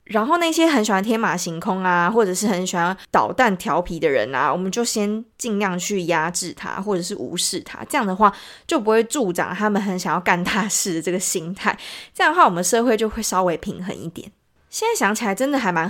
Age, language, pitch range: 20-39, Chinese, 185-250 Hz